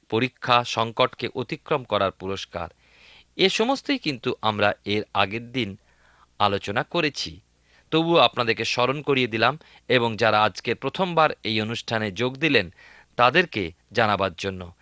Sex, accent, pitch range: male, native, 100-140 Hz